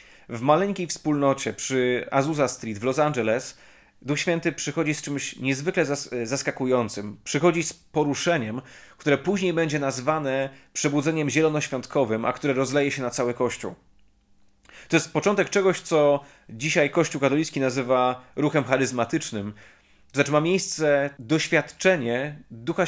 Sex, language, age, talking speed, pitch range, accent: male, Polish, 30-49, 125 wpm, 130-150 Hz, native